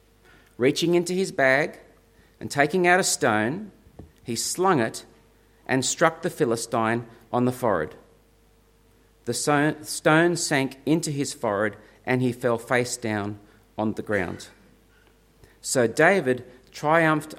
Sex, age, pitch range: male, 40-59, 115-155 Hz